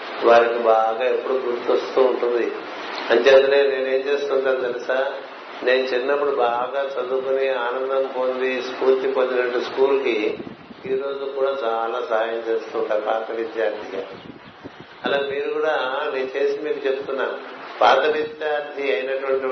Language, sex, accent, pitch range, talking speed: Telugu, male, native, 130-145 Hz, 110 wpm